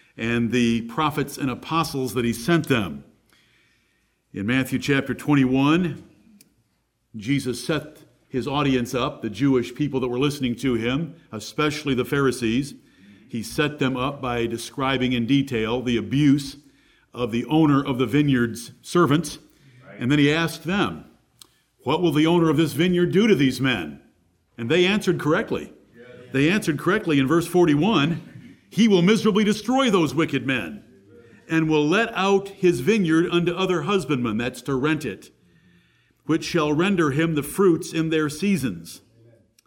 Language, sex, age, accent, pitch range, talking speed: English, male, 50-69, American, 125-165 Hz, 155 wpm